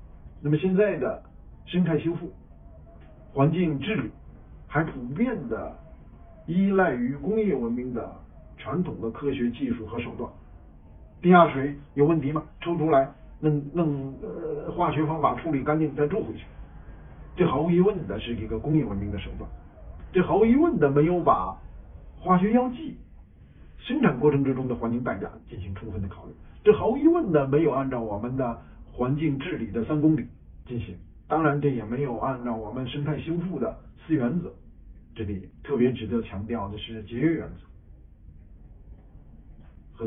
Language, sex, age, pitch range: Chinese, male, 50-69, 95-155 Hz